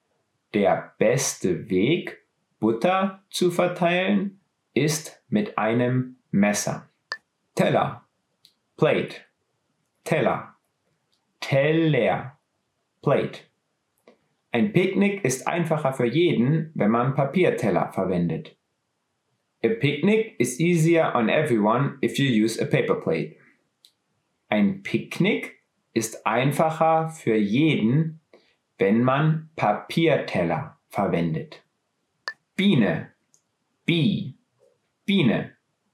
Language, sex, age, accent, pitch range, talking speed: English, male, 30-49, German, 115-170 Hz, 85 wpm